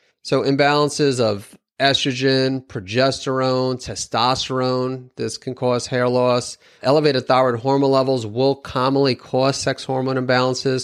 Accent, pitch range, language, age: American, 115-135 Hz, English, 30-49